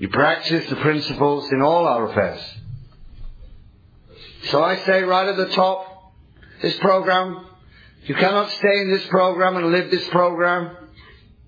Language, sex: English, male